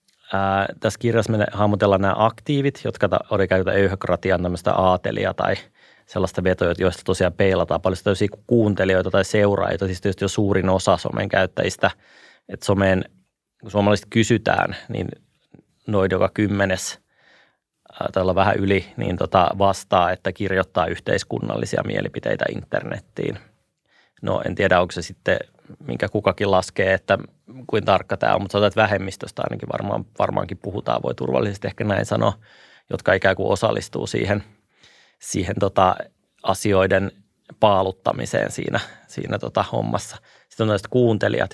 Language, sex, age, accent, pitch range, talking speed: Finnish, male, 30-49, native, 95-105 Hz, 135 wpm